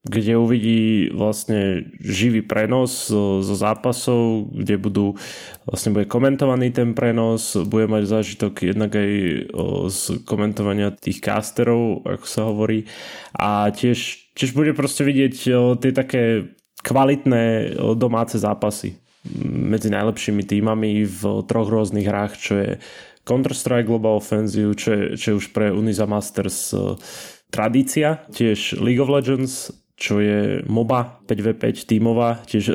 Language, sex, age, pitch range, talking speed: Slovak, male, 20-39, 105-120 Hz, 135 wpm